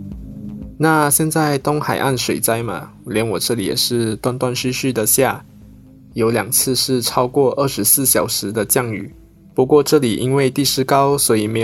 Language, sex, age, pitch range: Chinese, male, 20-39, 115-140 Hz